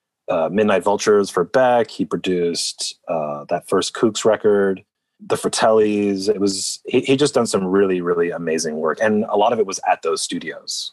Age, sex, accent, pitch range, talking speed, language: 30-49, male, American, 95-135 Hz, 175 wpm, English